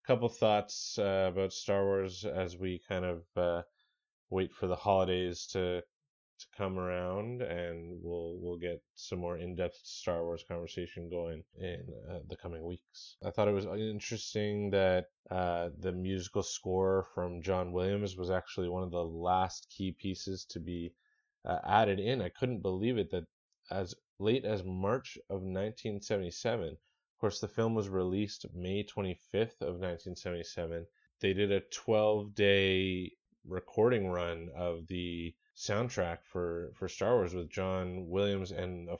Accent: American